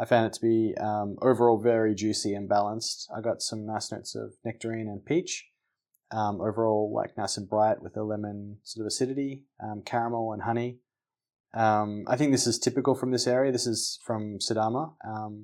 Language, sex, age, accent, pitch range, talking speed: English, male, 20-39, Australian, 110-125 Hz, 195 wpm